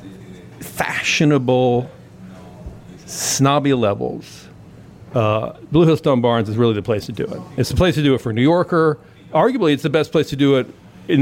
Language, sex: English, male